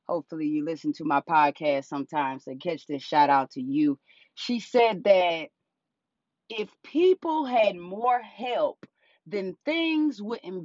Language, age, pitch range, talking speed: English, 30-49, 170-230 Hz, 140 wpm